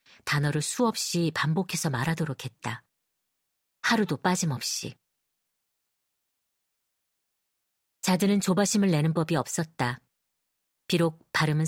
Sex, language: female, Korean